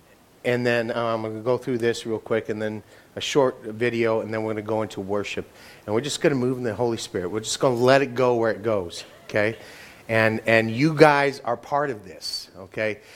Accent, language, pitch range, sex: American, English, 115-150 Hz, male